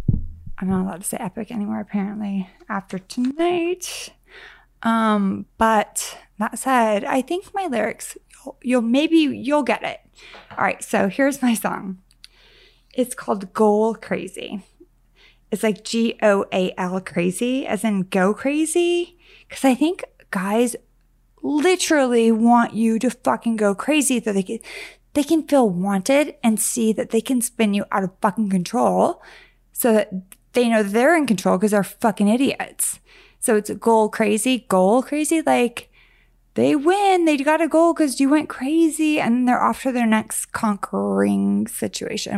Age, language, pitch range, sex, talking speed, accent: 20-39, English, 200-265 Hz, female, 150 wpm, American